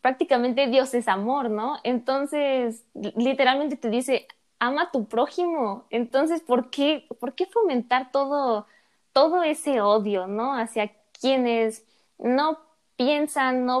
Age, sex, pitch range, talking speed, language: 20-39, female, 225-295 Hz, 120 wpm, Spanish